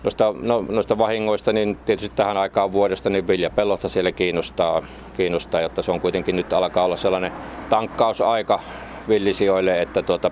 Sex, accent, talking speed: male, native, 150 wpm